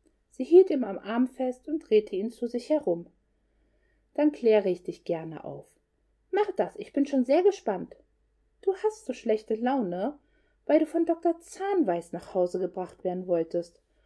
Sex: female